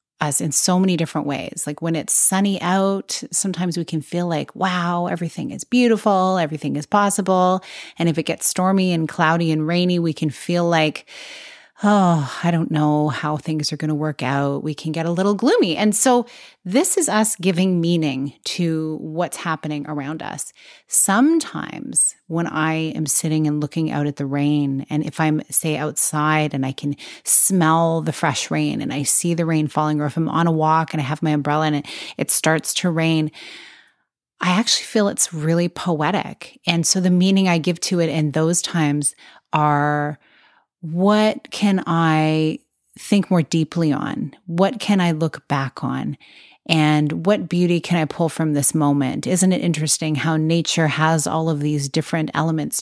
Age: 30-49